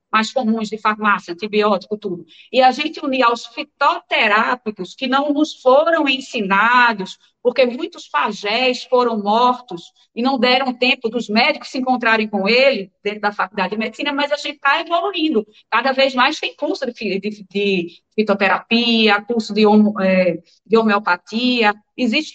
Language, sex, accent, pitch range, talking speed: Portuguese, female, Brazilian, 205-270 Hz, 145 wpm